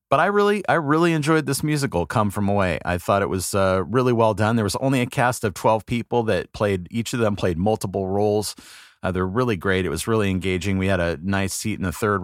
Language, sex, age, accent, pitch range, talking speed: English, male, 30-49, American, 85-105 Hz, 250 wpm